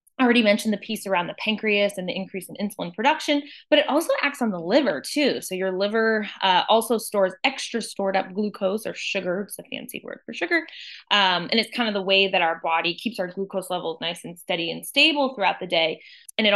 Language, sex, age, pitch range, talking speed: English, female, 20-39, 195-260 Hz, 230 wpm